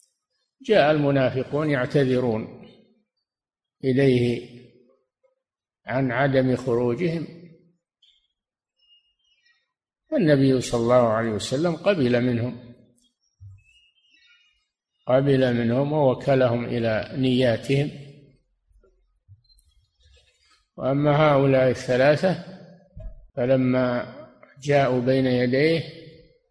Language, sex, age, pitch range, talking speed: Arabic, male, 60-79, 120-155 Hz, 60 wpm